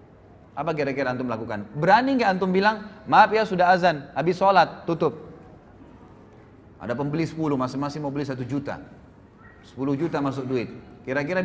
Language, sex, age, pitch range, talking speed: Indonesian, male, 30-49, 130-180 Hz, 145 wpm